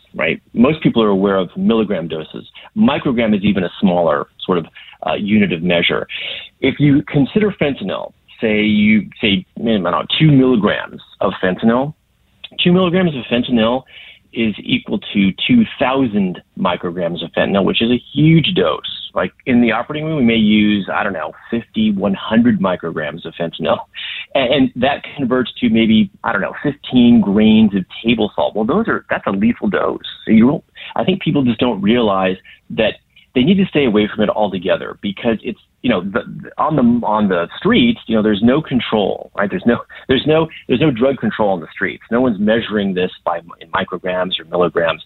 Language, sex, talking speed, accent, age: English, male, 185 wpm, American, 30-49